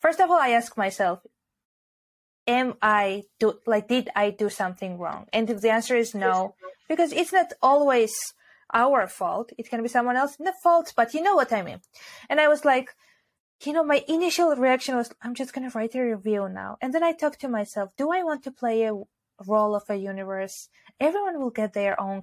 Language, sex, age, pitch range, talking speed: English, female, 20-39, 210-270 Hz, 210 wpm